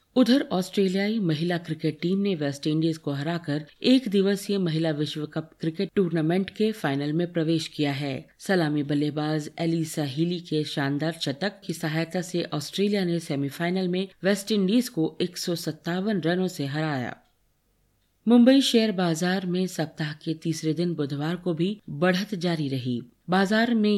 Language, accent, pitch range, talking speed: Hindi, native, 150-195 Hz, 145 wpm